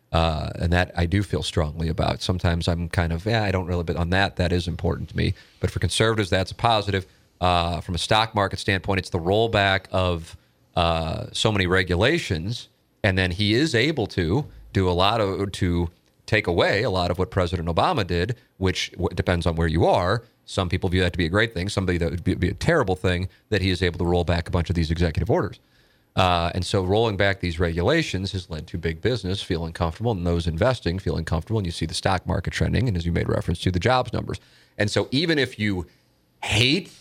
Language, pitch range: English, 90-115 Hz